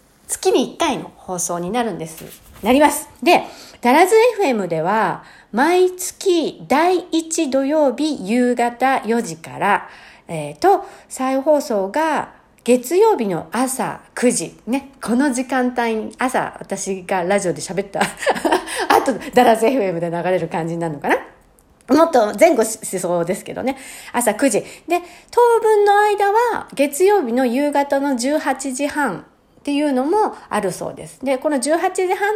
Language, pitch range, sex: Japanese, 200-315 Hz, female